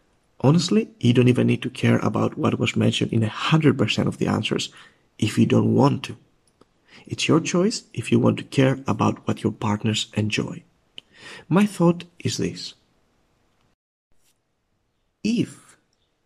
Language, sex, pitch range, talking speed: English, male, 115-160 Hz, 145 wpm